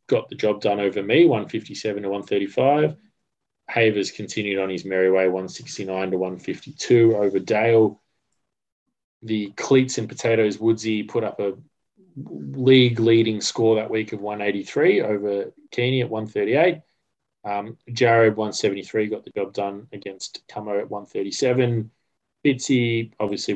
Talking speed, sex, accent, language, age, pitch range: 130 wpm, male, Australian, English, 20-39, 100-115 Hz